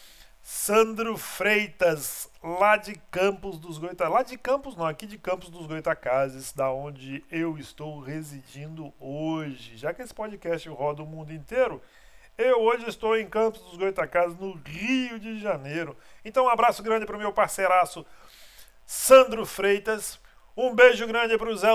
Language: Portuguese